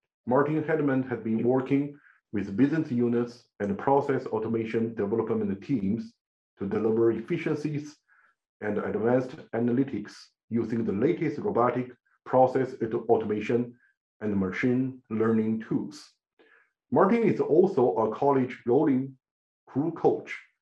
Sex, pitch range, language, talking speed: male, 115-135 Hz, English, 110 wpm